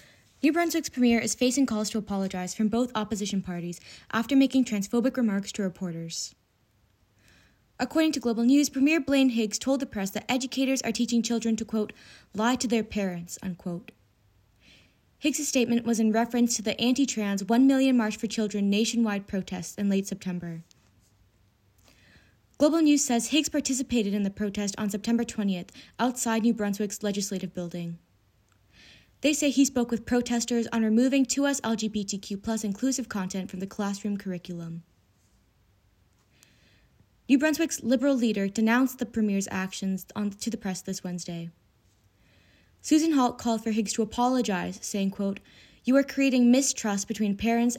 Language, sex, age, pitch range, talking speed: English, female, 20-39, 185-245 Hz, 150 wpm